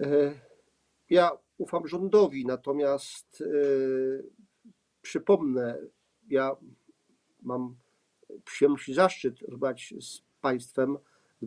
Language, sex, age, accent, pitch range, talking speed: Polish, male, 50-69, native, 125-160 Hz, 75 wpm